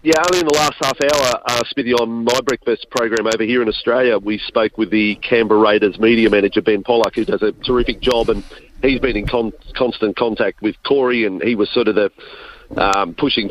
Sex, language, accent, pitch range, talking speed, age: male, English, Australian, 110-135 Hz, 220 wpm, 40-59